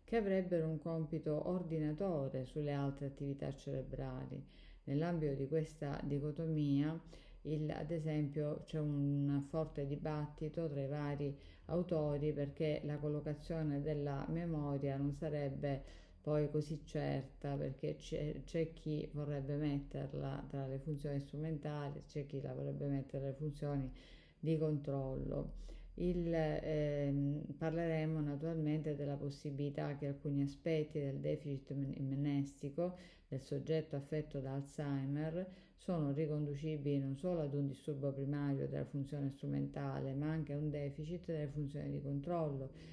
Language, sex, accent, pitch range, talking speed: Italian, female, native, 140-155 Hz, 125 wpm